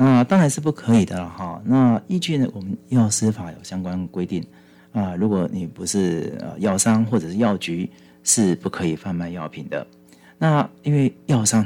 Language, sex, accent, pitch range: Chinese, male, native, 85-120 Hz